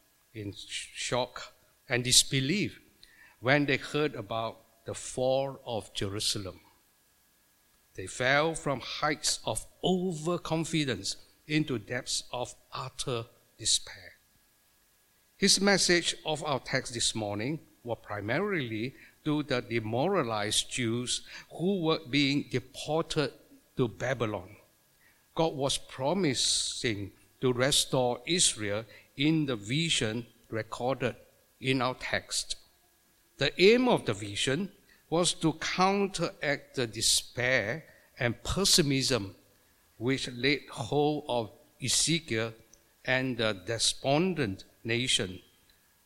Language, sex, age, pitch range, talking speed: English, male, 60-79, 110-150 Hz, 100 wpm